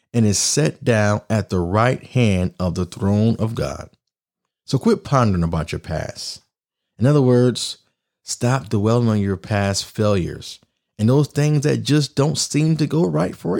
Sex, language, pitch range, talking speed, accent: male, English, 100-145 Hz, 170 wpm, American